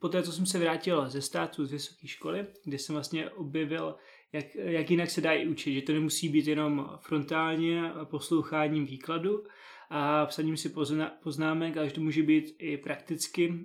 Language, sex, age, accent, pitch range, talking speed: Czech, male, 20-39, native, 145-160 Hz, 170 wpm